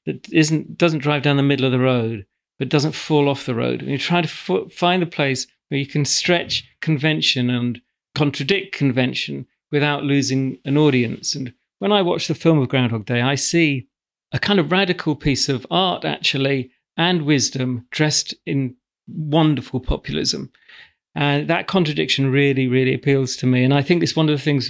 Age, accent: 40-59, British